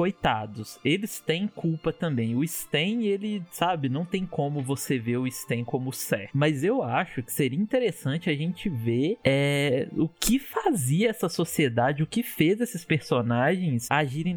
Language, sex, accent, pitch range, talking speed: Portuguese, male, Brazilian, 130-175 Hz, 160 wpm